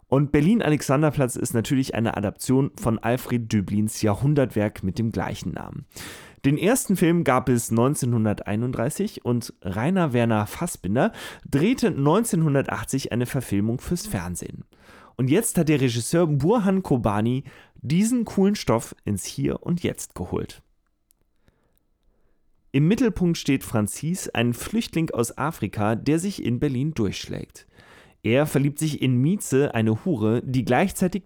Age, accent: 30-49, German